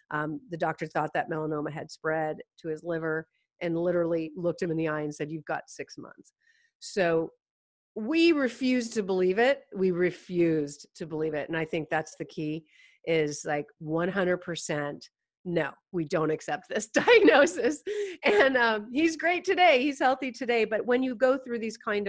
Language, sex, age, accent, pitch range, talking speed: English, female, 40-59, American, 170-270 Hz, 175 wpm